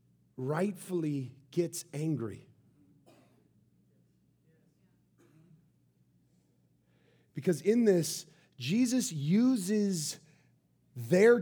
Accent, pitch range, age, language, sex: American, 125-200 Hz, 40-59, English, male